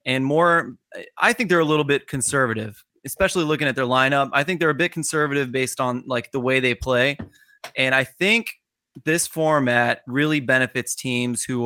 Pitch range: 125-160 Hz